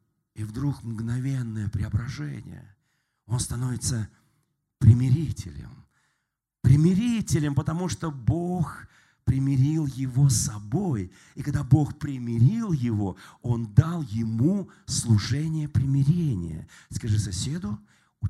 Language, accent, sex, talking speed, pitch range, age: Russian, native, male, 90 wpm, 120-160 Hz, 40-59